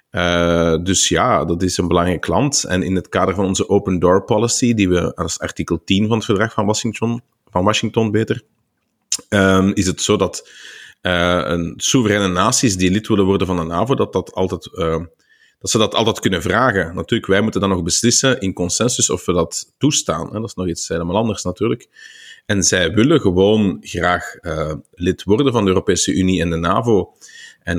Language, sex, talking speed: Dutch, male, 195 wpm